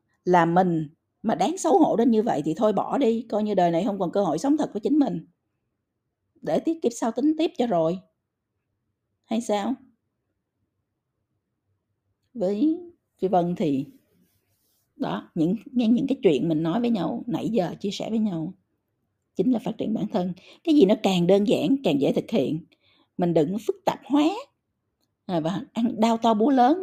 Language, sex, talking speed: Vietnamese, female, 180 wpm